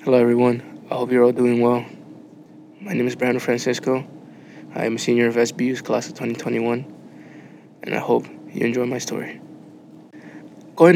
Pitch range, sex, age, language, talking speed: 120-130 Hz, male, 20-39, English, 165 wpm